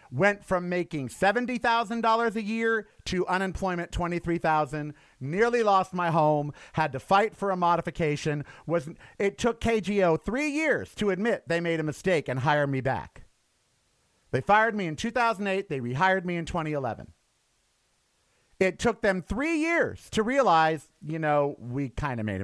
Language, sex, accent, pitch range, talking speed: English, male, American, 145-210 Hz, 150 wpm